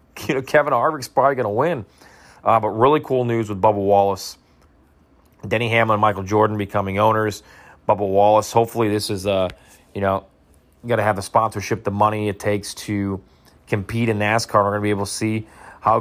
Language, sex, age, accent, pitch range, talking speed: English, male, 30-49, American, 95-110 Hz, 195 wpm